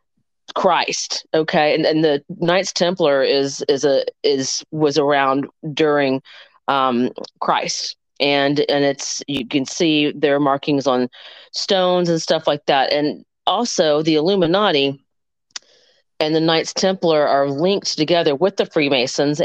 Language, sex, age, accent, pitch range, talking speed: English, female, 40-59, American, 140-180 Hz, 135 wpm